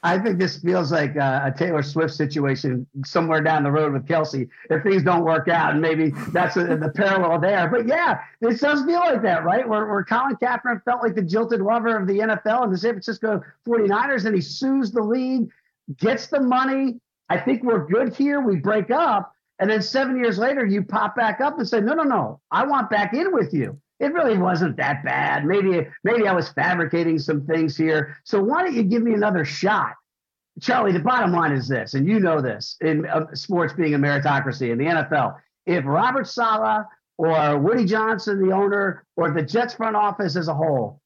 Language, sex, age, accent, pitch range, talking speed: English, male, 50-69, American, 155-225 Hz, 210 wpm